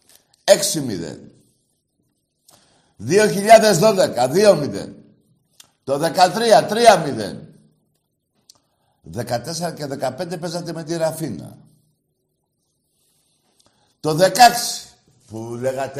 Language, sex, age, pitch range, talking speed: Greek, male, 60-79, 125-200 Hz, 60 wpm